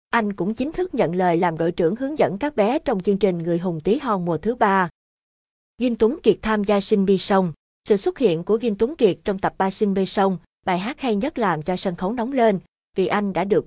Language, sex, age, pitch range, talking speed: Vietnamese, female, 20-39, 180-225 Hz, 255 wpm